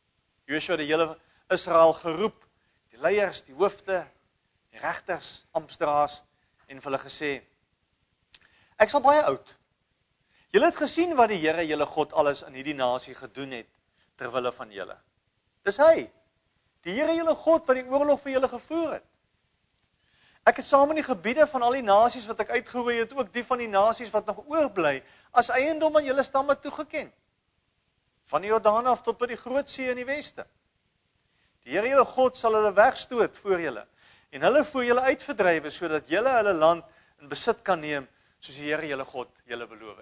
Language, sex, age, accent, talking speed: English, male, 50-69, Dutch, 170 wpm